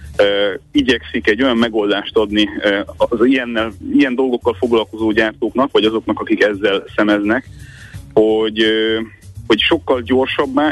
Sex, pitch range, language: male, 105-130 Hz, Hungarian